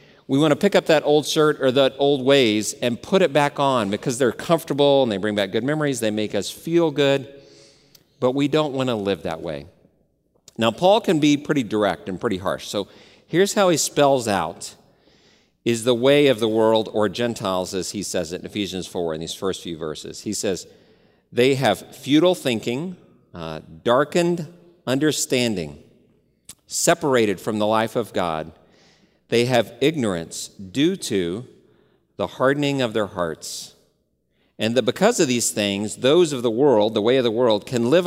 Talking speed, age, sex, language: 185 wpm, 50-69, male, English